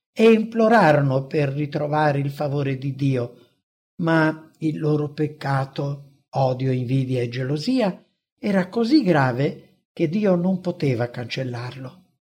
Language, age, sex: English, 60-79, male